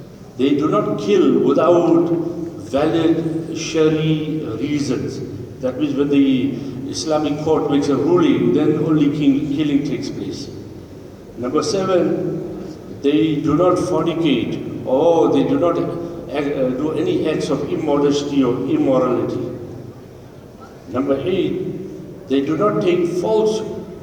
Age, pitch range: 60-79, 140-170 Hz